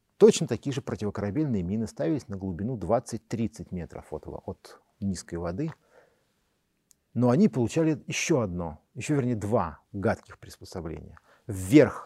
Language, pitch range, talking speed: Russian, 100-130 Hz, 125 wpm